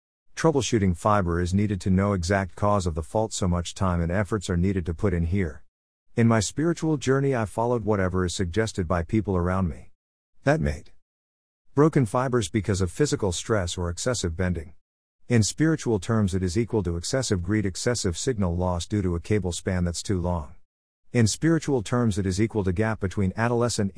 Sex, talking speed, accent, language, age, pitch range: male, 190 wpm, American, English, 50-69, 85-110 Hz